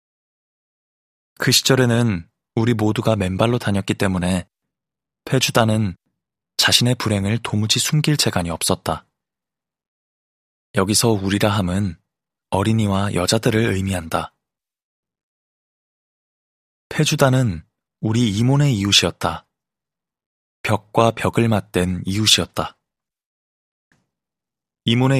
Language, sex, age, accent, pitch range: Korean, male, 20-39, native, 95-120 Hz